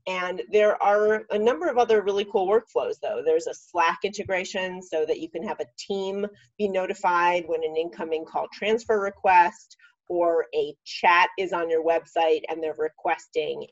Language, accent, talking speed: English, American, 175 wpm